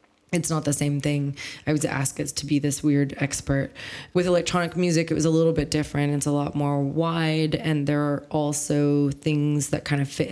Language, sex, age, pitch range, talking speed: English, female, 20-39, 140-170 Hz, 215 wpm